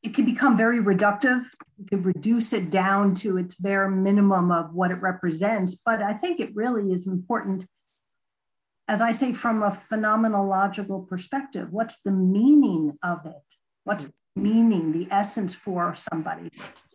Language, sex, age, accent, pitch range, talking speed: English, female, 50-69, American, 190-235 Hz, 155 wpm